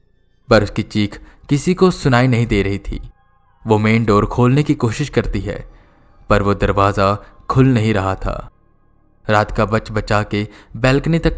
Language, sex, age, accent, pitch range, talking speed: Hindi, male, 20-39, native, 100-130 Hz, 160 wpm